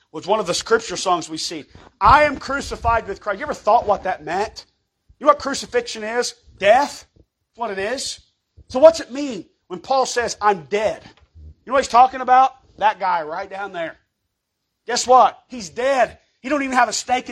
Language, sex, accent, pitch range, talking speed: English, male, American, 200-265 Hz, 205 wpm